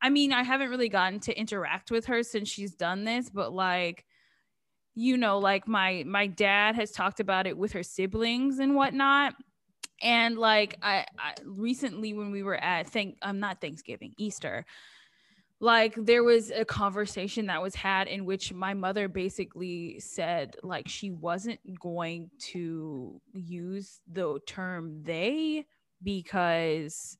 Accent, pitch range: American, 185-230 Hz